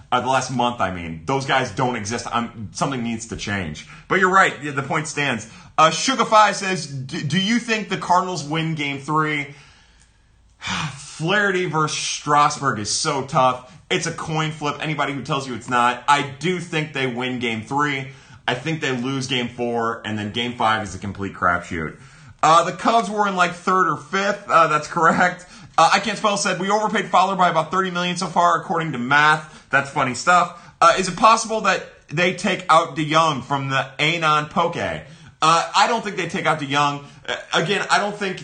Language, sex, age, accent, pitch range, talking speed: English, male, 30-49, American, 130-180 Hz, 200 wpm